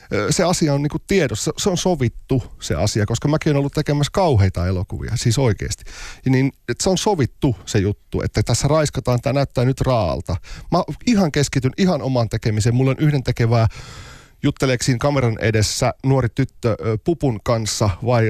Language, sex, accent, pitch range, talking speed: Finnish, male, native, 105-135 Hz, 165 wpm